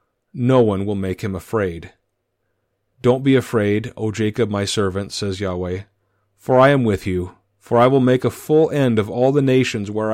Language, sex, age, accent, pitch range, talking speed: English, male, 40-59, American, 100-130 Hz, 190 wpm